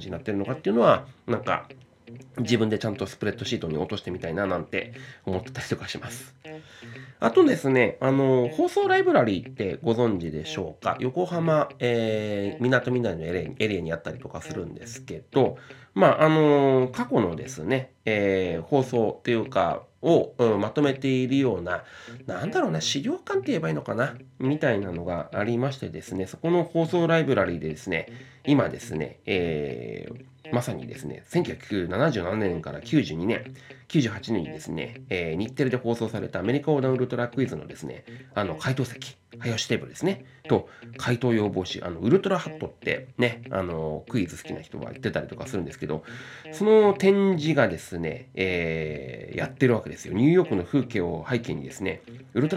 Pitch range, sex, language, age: 105-140 Hz, male, Japanese, 30-49